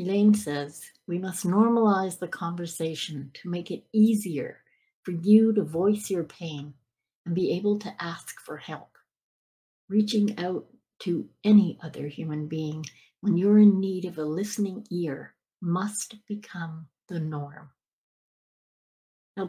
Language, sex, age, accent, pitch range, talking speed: English, female, 60-79, American, 160-210 Hz, 135 wpm